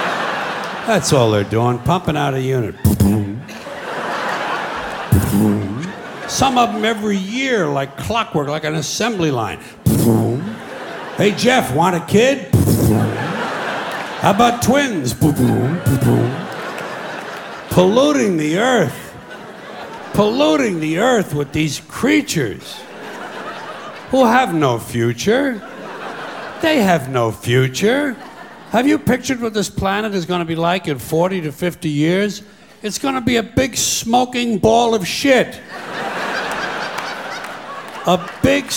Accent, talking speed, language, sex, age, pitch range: American, 110 wpm, English, male, 60-79, 145-235 Hz